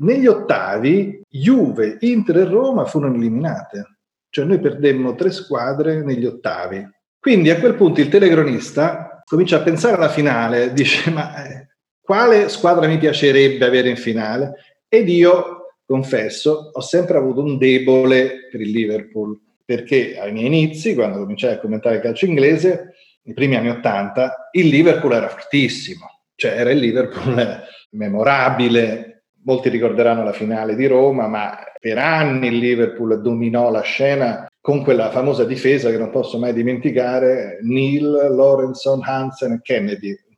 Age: 40-59